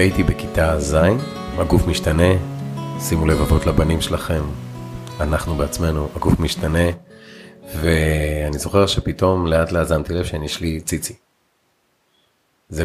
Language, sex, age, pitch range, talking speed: Hebrew, male, 30-49, 80-95 Hz, 105 wpm